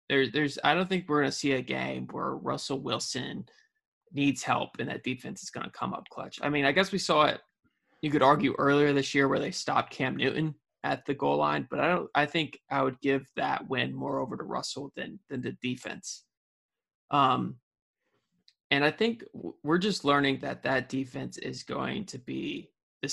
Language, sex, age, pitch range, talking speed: English, male, 20-39, 135-160 Hz, 205 wpm